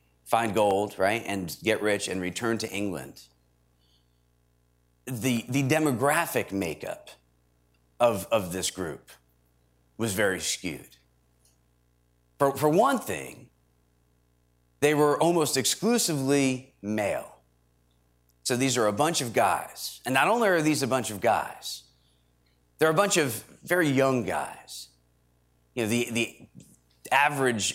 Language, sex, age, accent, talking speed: English, male, 40-59, American, 125 wpm